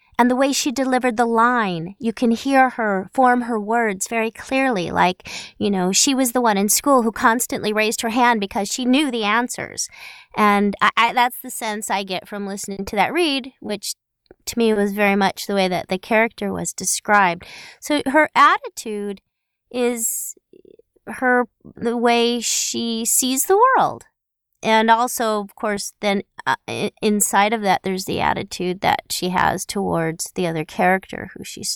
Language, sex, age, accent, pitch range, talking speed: English, female, 30-49, American, 185-240 Hz, 175 wpm